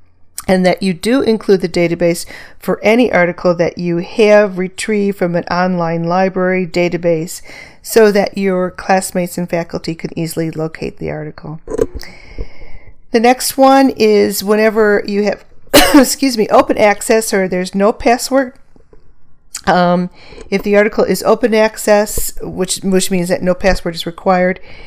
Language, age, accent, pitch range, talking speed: English, 40-59, American, 175-210 Hz, 145 wpm